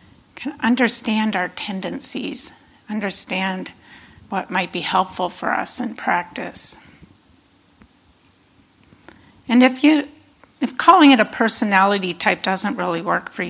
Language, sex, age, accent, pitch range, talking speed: English, female, 50-69, American, 185-230 Hz, 110 wpm